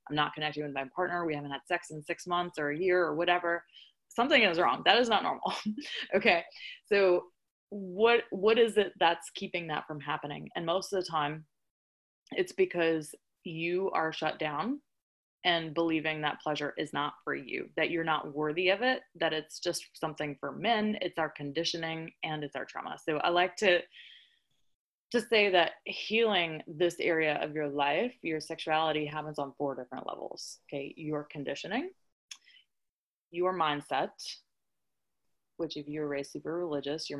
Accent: American